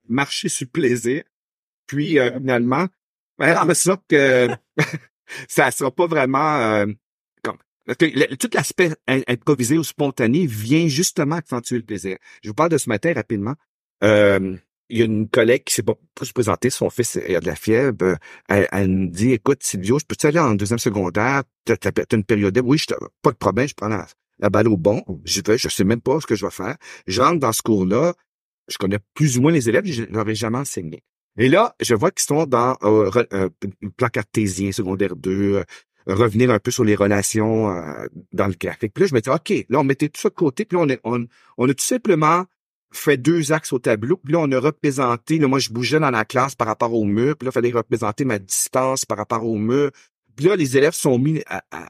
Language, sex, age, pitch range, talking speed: French, male, 50-69, 110-150 Hz, 225 wpm